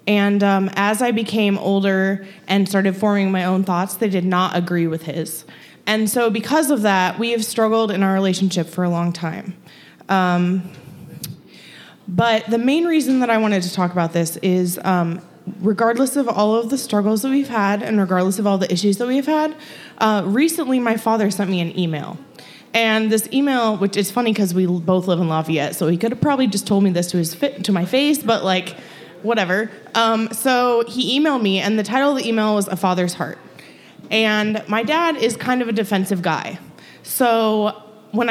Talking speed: 200 wpm